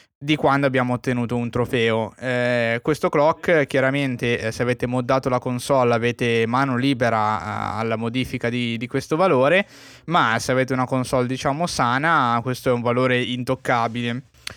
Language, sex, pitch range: Italian, male, 115-130 Hz